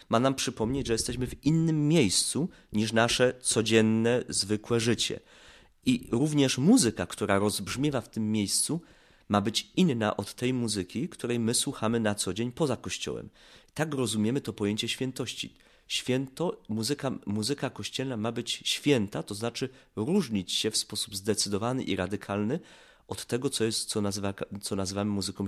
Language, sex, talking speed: Polish, male, 155 wpm